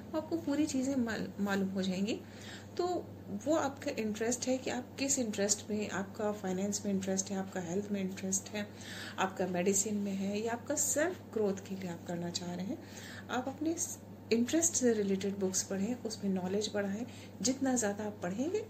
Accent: native